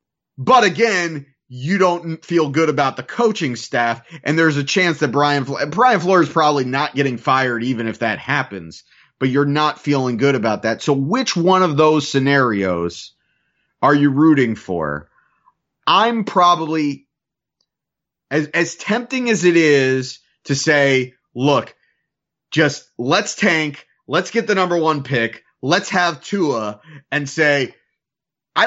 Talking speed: 145 wpm